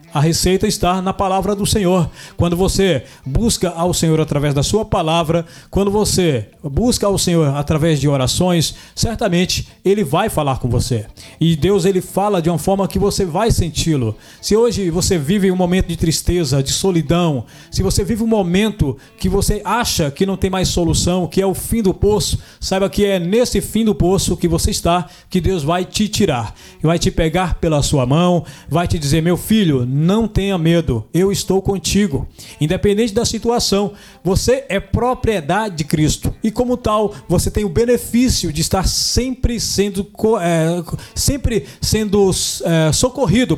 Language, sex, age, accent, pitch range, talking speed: Portuguese, male, 20-39, Brazilian, 155-200 Hz, 170 wpm